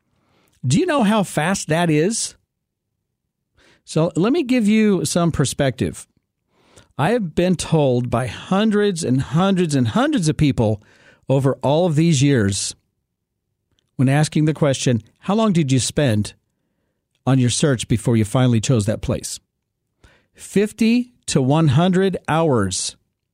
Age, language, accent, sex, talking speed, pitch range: 50-69, English, American, male, 135 wpm, 120-175 Hz